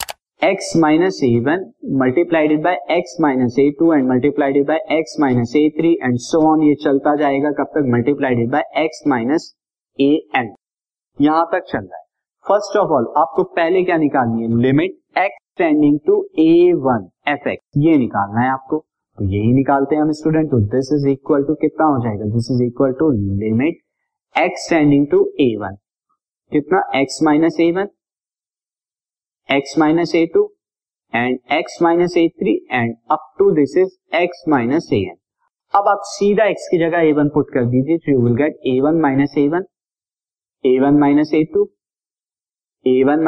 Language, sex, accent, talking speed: Hindi, male, native, 135 wpm